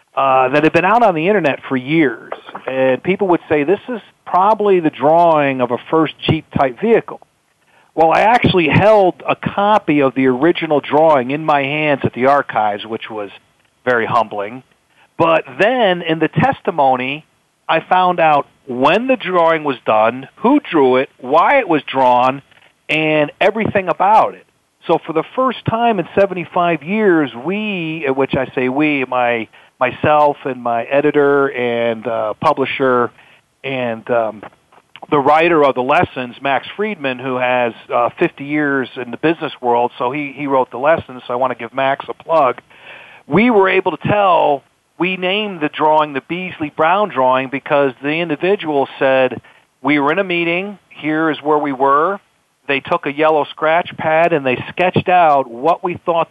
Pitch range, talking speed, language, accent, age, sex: 130-170 Hz, 175 wpm, English, American, 40-59, male